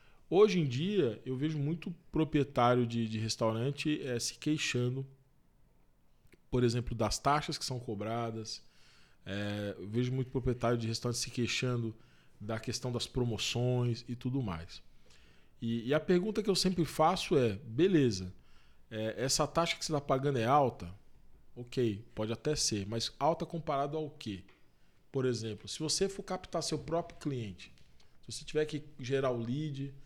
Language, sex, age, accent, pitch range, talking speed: Portuguese, male, 20-39, Brazilian, 115-150 Hz, 155 wpm